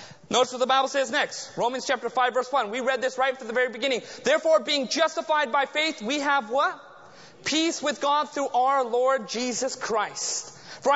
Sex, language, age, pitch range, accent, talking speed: male, English, 30-49, 275-325 Hz, American, 195 wpm